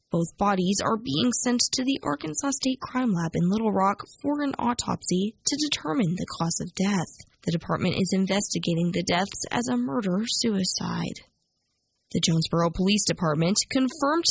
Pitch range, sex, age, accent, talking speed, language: 185-255 Hz, female, 10-29, American, 155 wpm, English